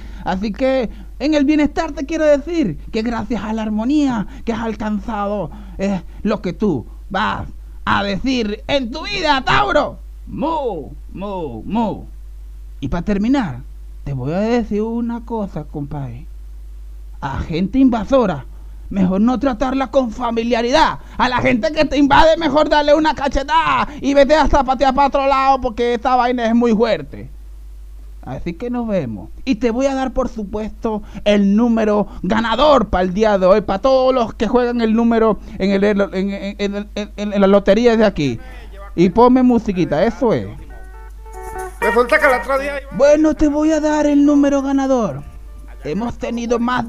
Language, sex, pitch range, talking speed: Spanish, male, 200-265 Hz, 155 wpm